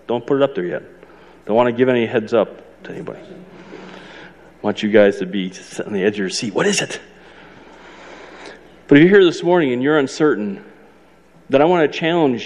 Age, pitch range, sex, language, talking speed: 40-59, 125-165 Hz, male, English, 210 wpm